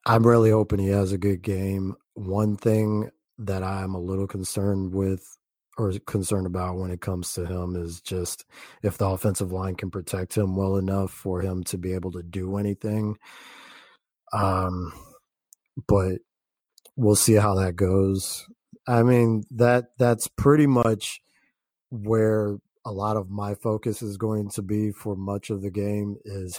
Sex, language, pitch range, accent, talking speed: male, English, 95-110 Hz, American, 165 wpm